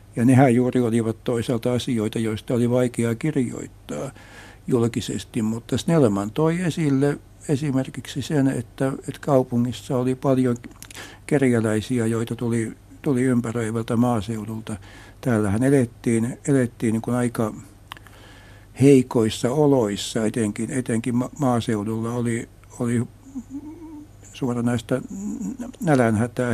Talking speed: 95 wpm